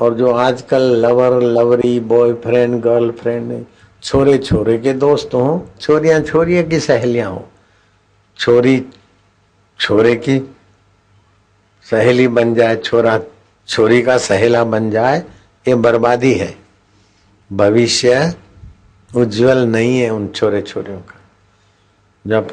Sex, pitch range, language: male, 105-125 Hz, Hindi